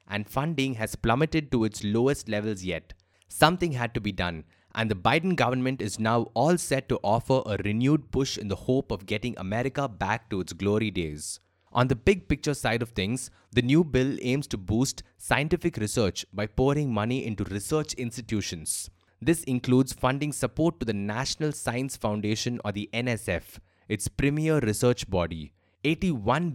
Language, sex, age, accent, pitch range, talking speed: English, male, 20-39, Indian, 100-135 Hz, 170 wpm